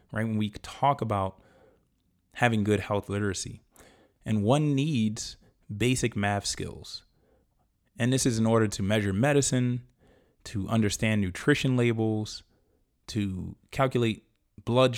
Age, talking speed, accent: 20-39, 120 wpm, American